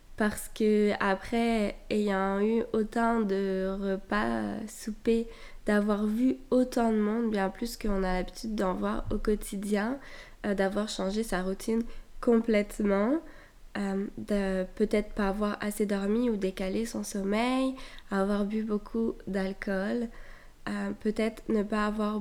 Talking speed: 130 wpm